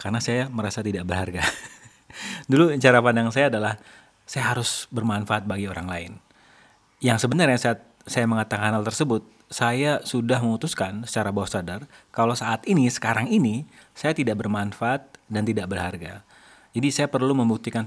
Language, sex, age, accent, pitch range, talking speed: Indonesian, male, 30-49, native, 105-125 Hz, 150 wpm